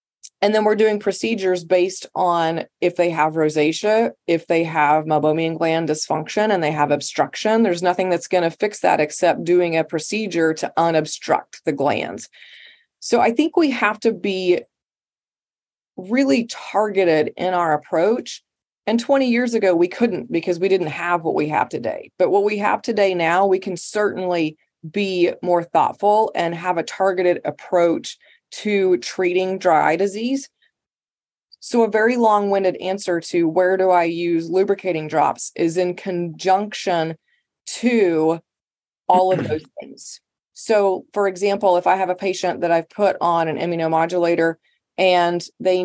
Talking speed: 160 wpm